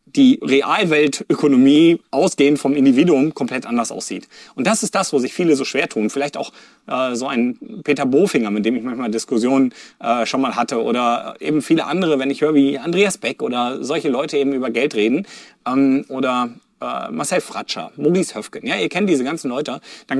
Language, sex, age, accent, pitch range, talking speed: German, male, 30-49, German, 130-165 Hz, 195 wpm